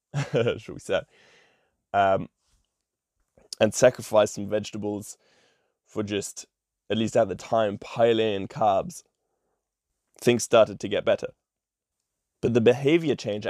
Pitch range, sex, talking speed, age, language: 105-120 Hz, male, 115 wpm, 20-39, English